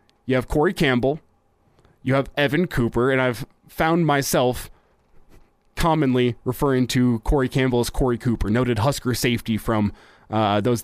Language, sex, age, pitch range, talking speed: English, male, 20-39, 120-145 Hz, 145 wpm